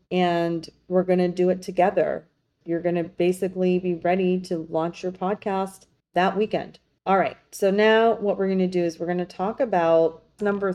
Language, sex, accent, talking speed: English, female, American, 195 wpm